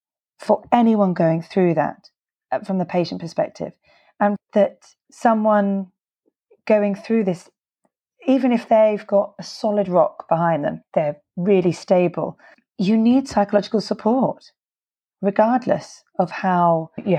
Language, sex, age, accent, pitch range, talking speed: English, female, 30-49, British, 175-210 Hz, 120 wpm